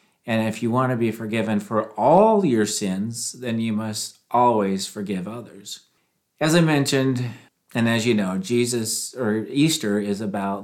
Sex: male